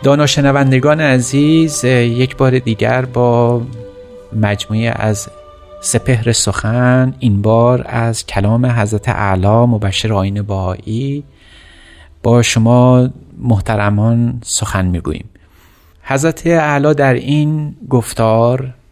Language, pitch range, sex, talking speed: Persian, 100-130 Hz, male, 90 wpm